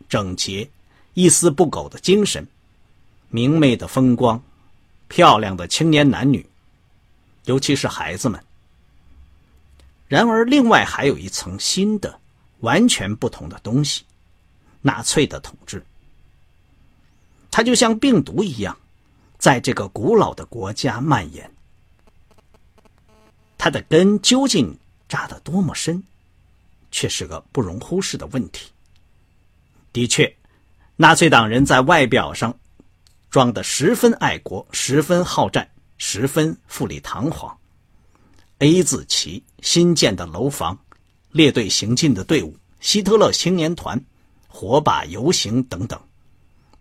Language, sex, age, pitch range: Chinese, male, 50-69, 90-155 Hz